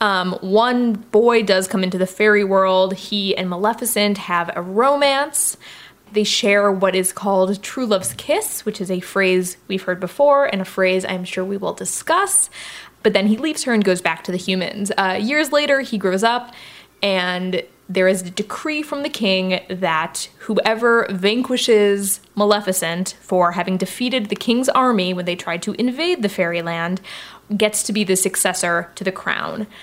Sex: female